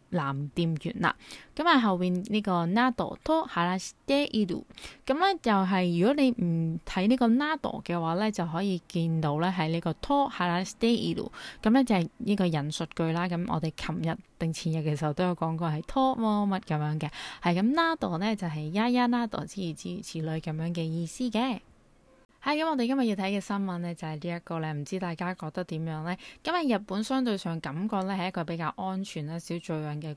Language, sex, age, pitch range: Chinese, female, 20-39, 165-220 Hz